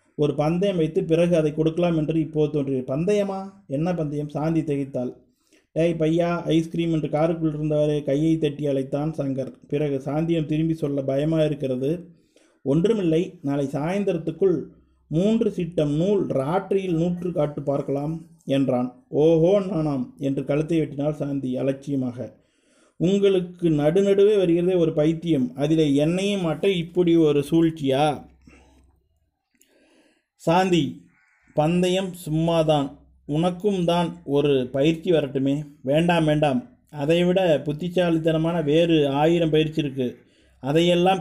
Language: Tamil